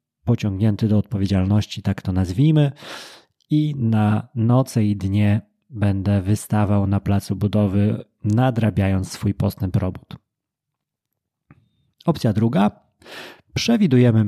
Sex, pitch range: male, 105-125 Hz